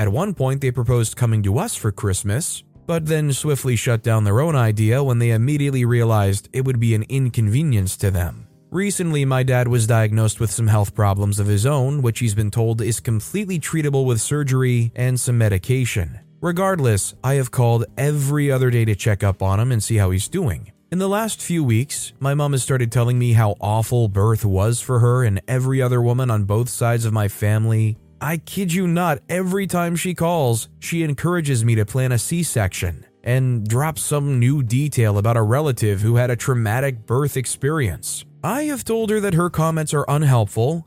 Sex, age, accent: male, 20-39, American